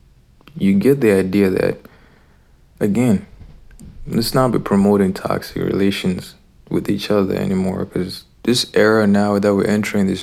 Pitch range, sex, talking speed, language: 90-110 Hz, male, 140 wpm, English